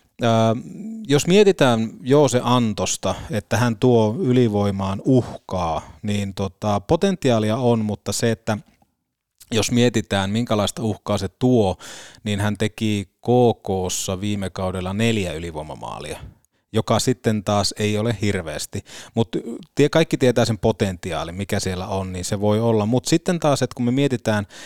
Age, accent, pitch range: 30-49, native, 95-120 Hz